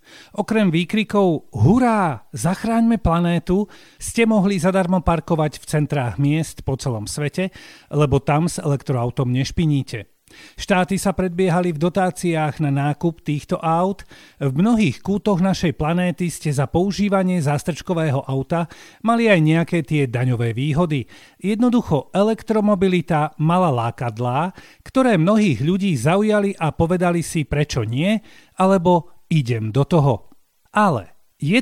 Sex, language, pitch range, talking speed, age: male, Slovak, 145-190 Hz, 120 wpm, 40-59